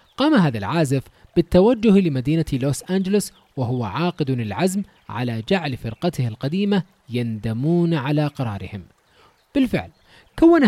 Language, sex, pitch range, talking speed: English, male, 130-195 Hz, 105 wpm